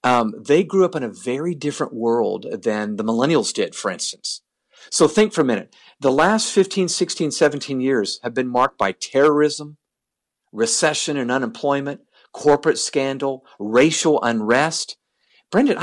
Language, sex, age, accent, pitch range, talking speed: English, male, 50-69, American, 120-170 Hz, 150 wpm